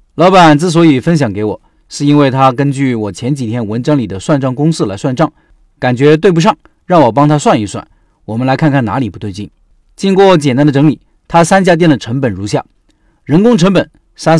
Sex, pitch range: male, 120-165 Hz